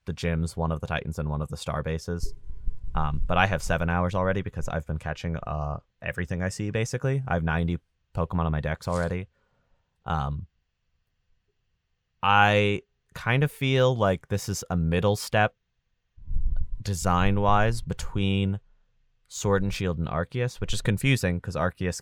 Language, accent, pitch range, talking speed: English, American, 80-100 Hz, 160 wpm